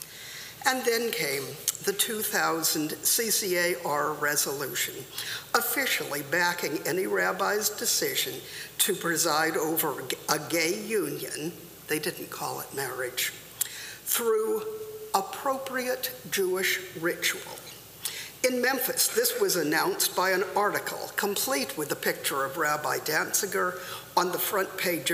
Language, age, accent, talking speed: English, 50-69, American, 110 wpm